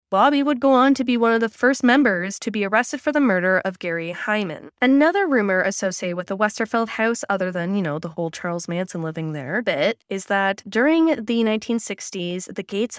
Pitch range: 185-255 Hz